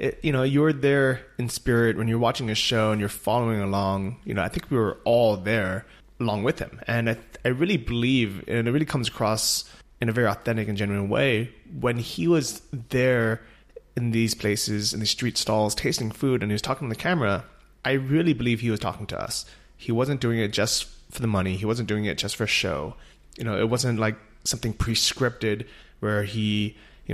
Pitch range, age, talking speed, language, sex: 105-130 Hz, 20-39, 220 wpm, English, male